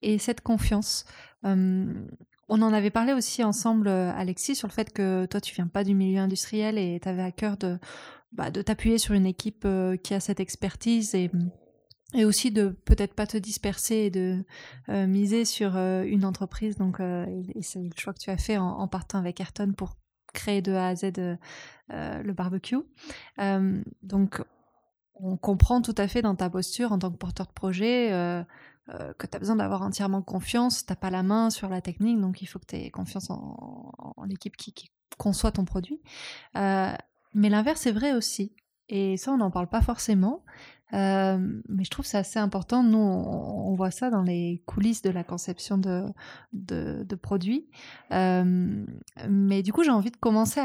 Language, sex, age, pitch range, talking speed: French, female, 20-39, 190-220 Hz, 205 wpm